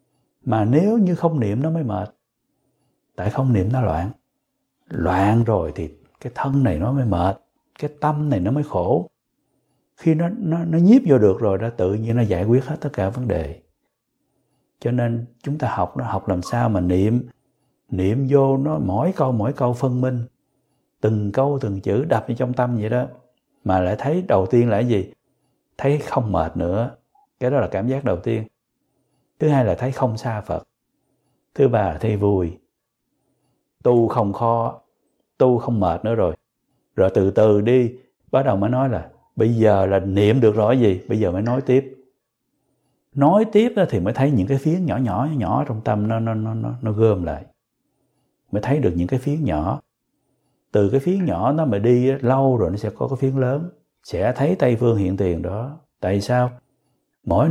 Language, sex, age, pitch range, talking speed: Vietnamese, male, 60-79, 105-135 Hz, 195 wpm